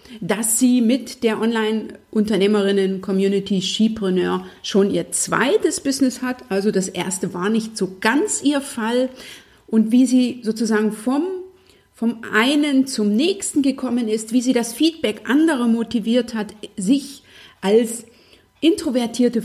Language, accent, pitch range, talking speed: German, German, 200-260 Hz, 125 wpm